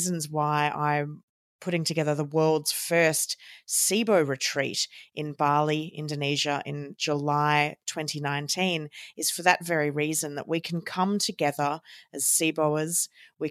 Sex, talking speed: female, 125 wpm